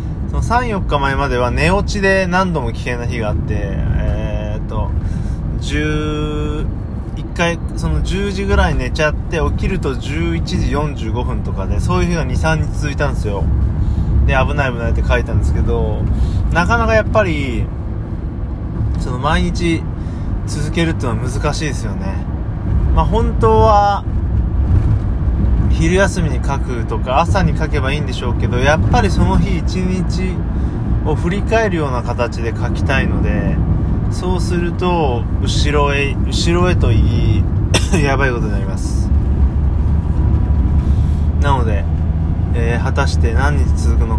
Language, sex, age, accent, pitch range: Japanese, male, 20-39, native, 75-100 Hz